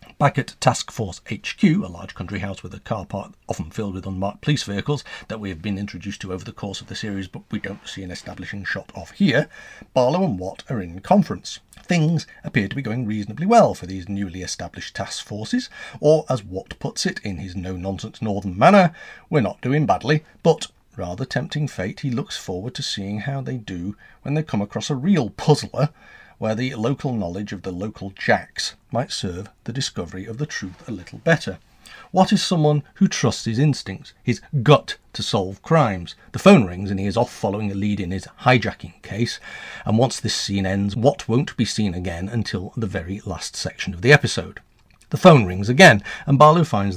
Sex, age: male, 40-59